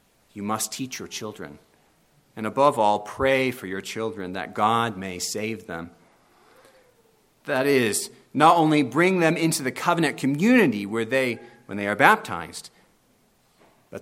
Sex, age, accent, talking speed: male, 40-59, American, 145 wpm